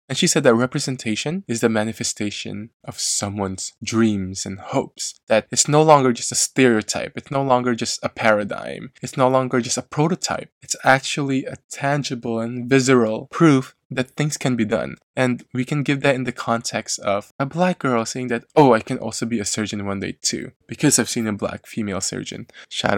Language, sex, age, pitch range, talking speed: English, male, 20-39, 110-140 Hz, 200 wpm